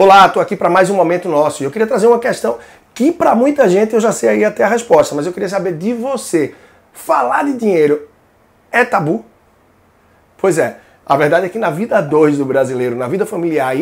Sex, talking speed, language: male, 215 wpm, Portuguese